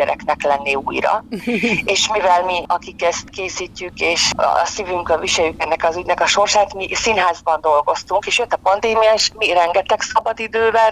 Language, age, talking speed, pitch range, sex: Hungarian, 30-49, 160 wpm, 165-205 Hz, female